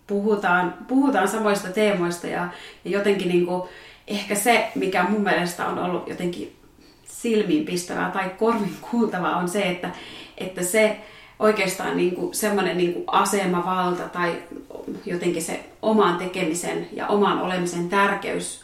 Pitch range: 180-215 Hz